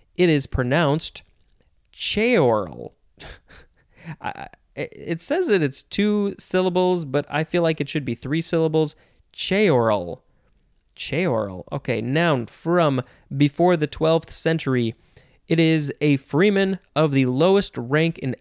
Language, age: English, 20-39